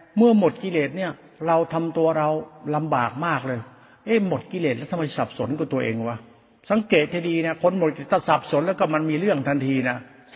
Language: Thai